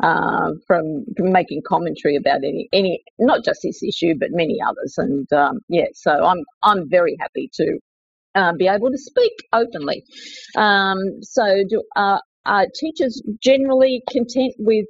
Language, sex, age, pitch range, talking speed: English, female, 50-69, 160-215 Hz, 160 wpm